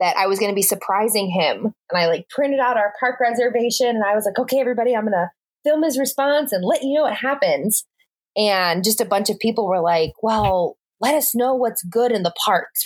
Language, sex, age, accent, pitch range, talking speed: English, female, 20-39, American, 180-250 Hz, 240 wpm